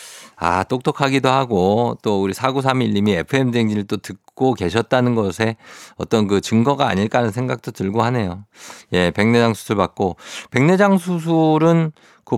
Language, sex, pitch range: Korean, male, 95-135 Hz